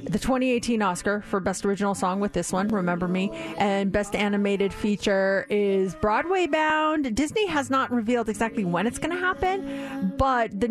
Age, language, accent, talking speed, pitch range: 30-49, English, American, 170 wpm, 195-265 Hz